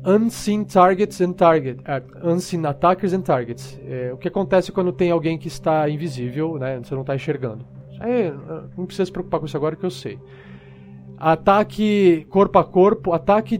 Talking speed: 175 wpm